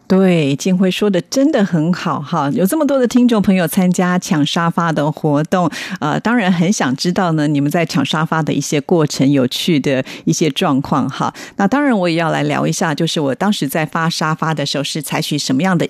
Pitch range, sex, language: 155-195 Hz, female, Chinese